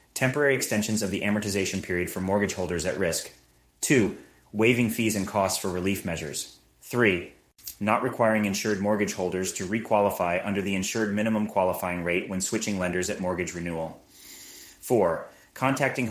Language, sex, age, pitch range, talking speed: English, male, 30-49, 95-110 Hz, 155 wpm